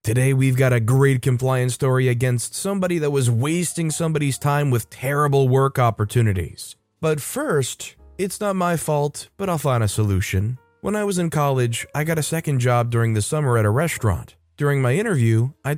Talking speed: 185 wpm